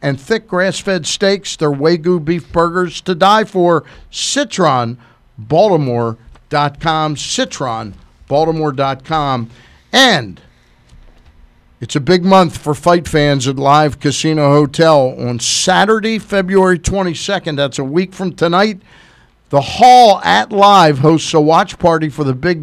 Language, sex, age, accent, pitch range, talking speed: English, male, 50-69, American, 145-190 Hz, 120 wpm